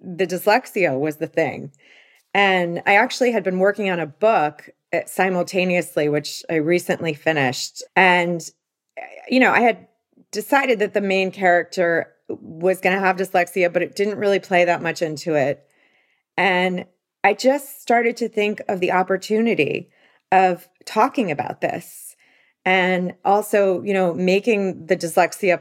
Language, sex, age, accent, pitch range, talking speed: English, female, 30-49, American, 175-205 Hz, 145 wpm